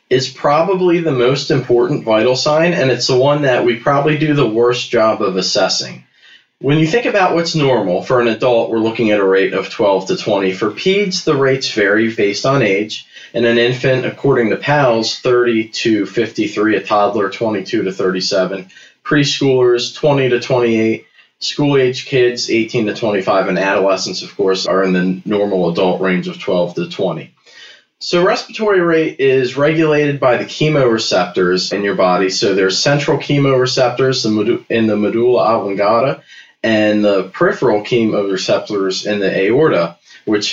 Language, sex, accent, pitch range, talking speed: English, male, American, 100-140 Hz, 165 wpm